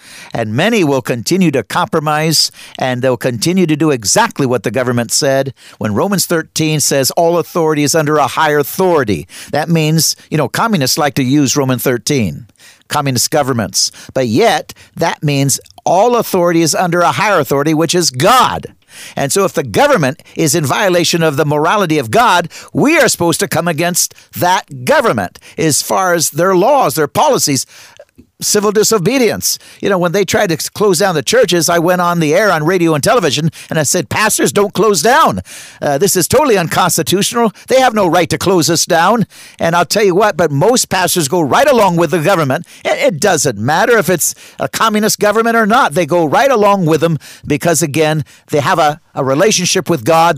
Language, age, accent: English, 50-69, American